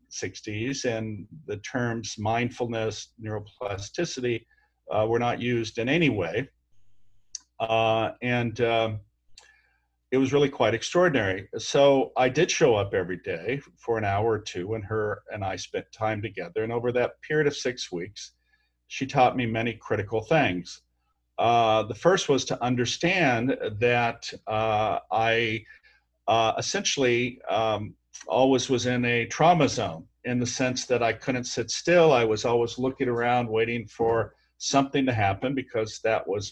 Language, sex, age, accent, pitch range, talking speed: English, male, 50-69, American, 105-125 Hz, 150 wpm